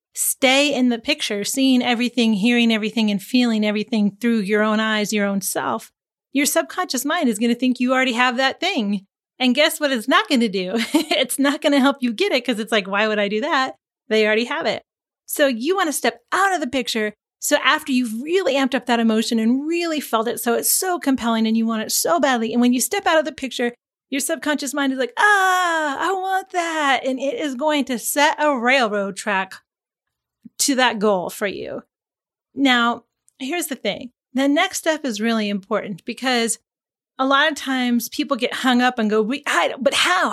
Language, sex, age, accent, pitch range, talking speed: English, female, 30-49, American, 225-285 Hz, 215 wpm